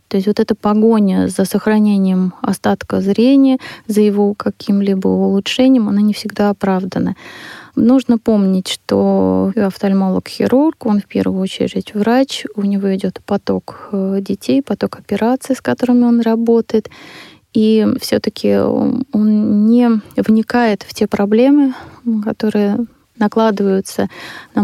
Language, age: Russian, 20-39